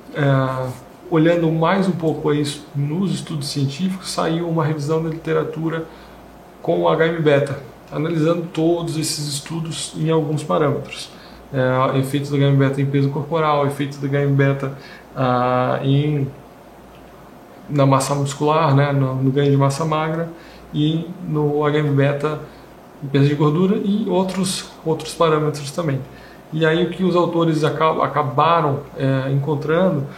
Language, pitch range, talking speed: Portuguese, 140-160 Hz, 130 wpm